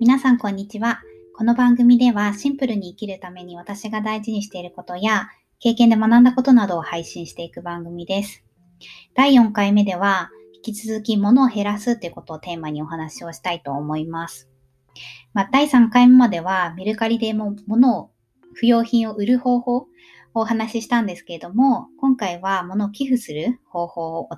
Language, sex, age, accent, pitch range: Japanese, male, 20-39, native, 165-235 Hz